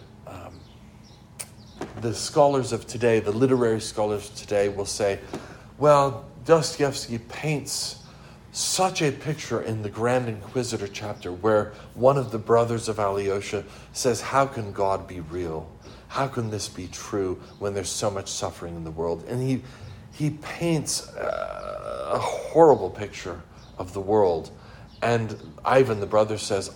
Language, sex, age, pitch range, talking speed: English, male, 50-69, 100-135 Hz, 145 wpm